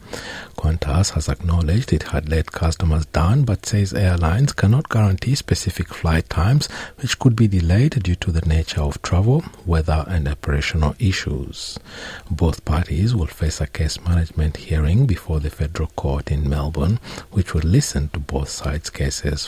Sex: male